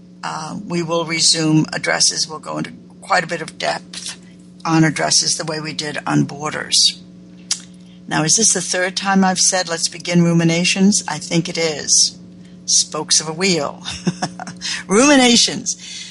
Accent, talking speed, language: American, 155 wpm, English